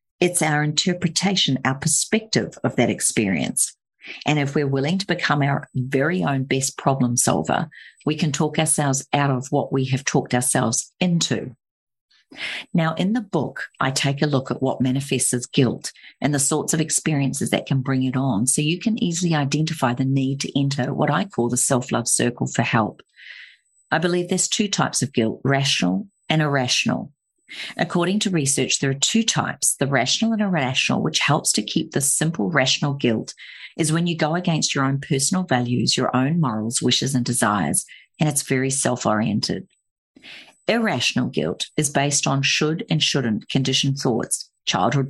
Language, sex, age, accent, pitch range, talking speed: English, female, 50-69, Australian, 130-160 Hz, 175 wpm